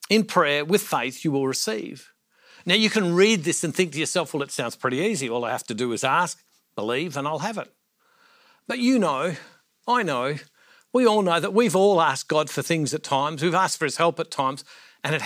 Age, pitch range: 60-79, 155-205 Hz